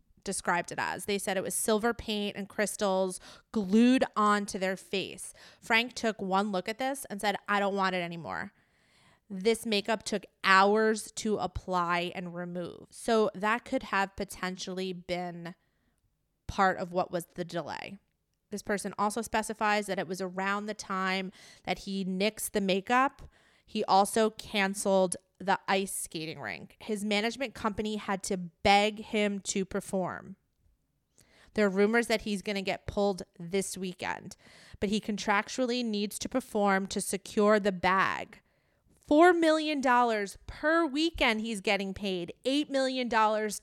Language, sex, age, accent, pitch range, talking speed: English, female, 20-39, American, 185-215 Hz, 155 wpm